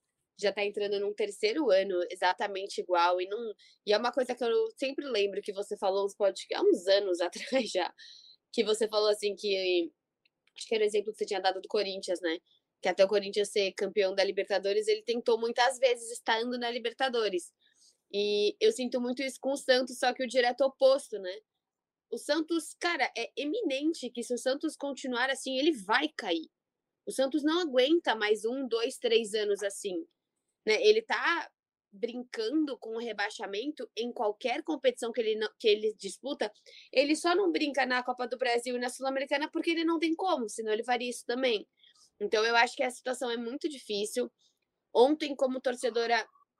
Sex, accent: female, Brazilian